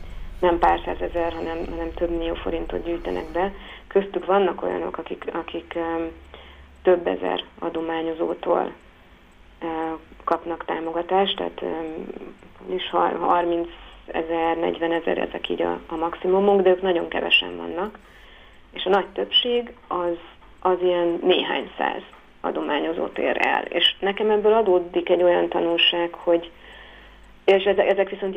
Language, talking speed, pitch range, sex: Hungarian, 125 wpm, 165-175 Hz, female